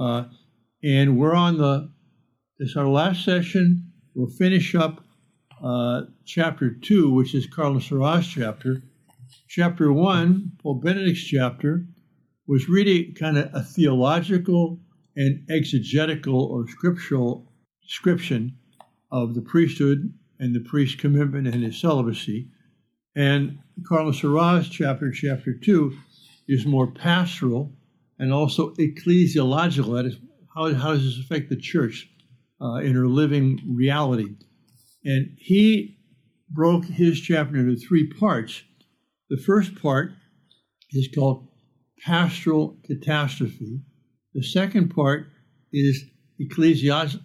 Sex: male